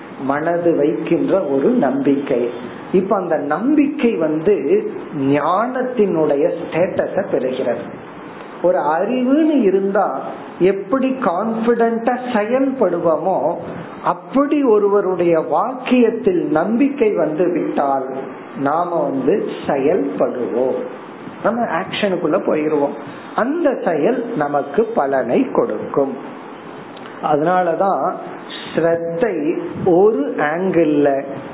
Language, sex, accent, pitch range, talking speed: Tamil, male, native, 155-230 Hz, 50 wpm